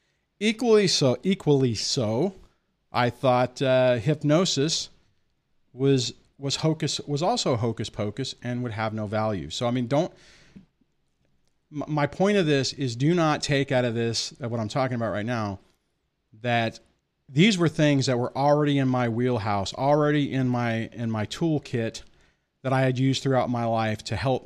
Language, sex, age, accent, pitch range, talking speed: English, male, 40-59, American, 110-140 Hz, 160 wpm